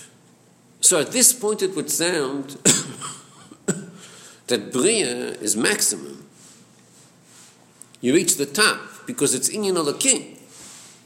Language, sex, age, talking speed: English, male, 50-69, 110 wpm